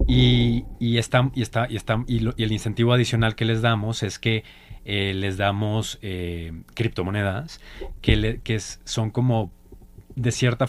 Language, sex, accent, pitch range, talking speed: Spanish, male, Mexican, 95-115 Hz, 175 wpm